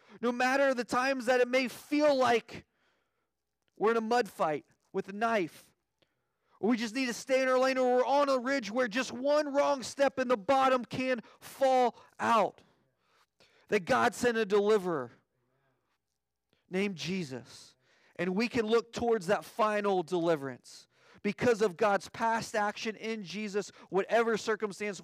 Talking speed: 160 wpm